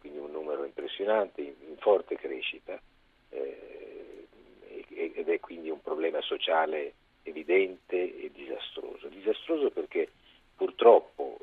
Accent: native